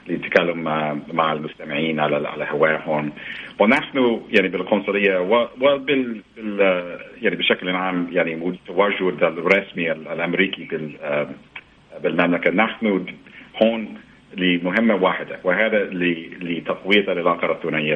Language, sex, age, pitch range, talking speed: Arabic, male, 50-69, 80-100 Hz, 105 wpm